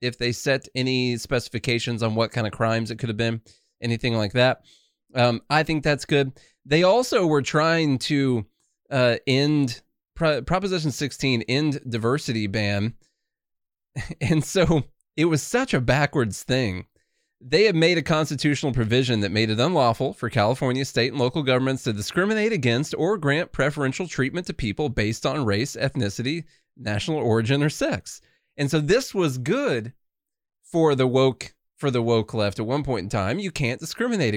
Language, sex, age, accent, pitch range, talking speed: English, male, 20-39, American, 115-150 Hz, 170 wpm